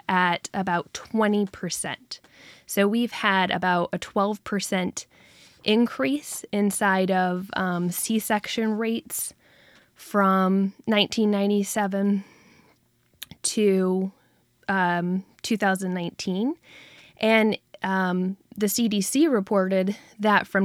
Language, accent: English, American